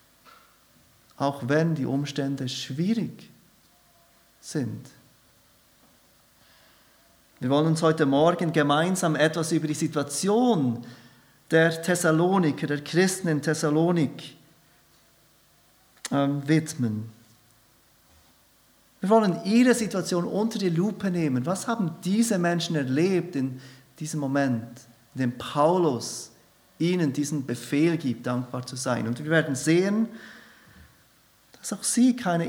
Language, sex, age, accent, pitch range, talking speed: German, male, 40-59, German, 130-170 Hz, 105 wpm